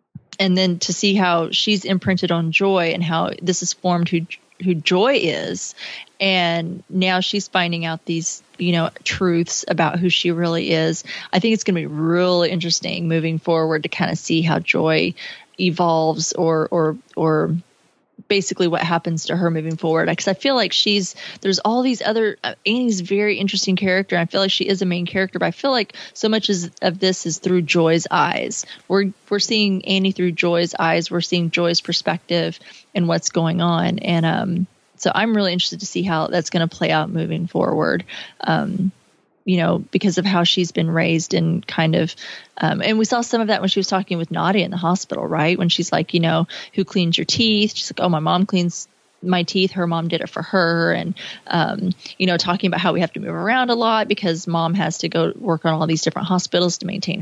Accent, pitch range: American, 165-195 Hz